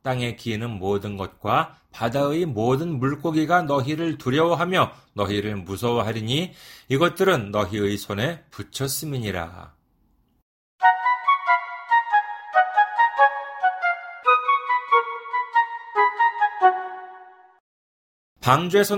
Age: 40-59